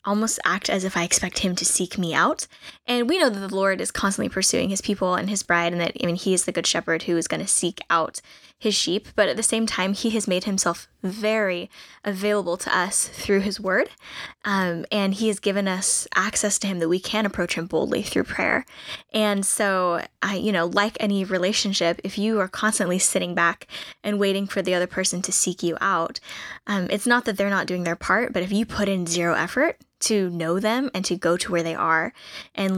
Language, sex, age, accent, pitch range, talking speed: English, female, 10-29, American, 175-205 Hz, 230 wpm